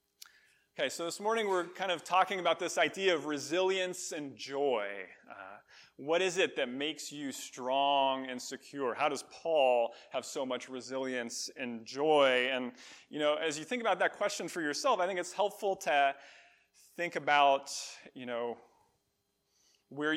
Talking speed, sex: 165 wpm, male